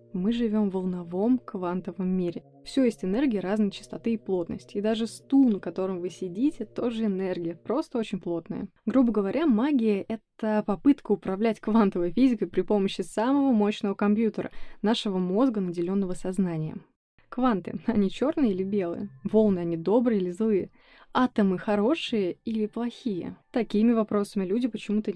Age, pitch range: 20-39, 185-230 Hz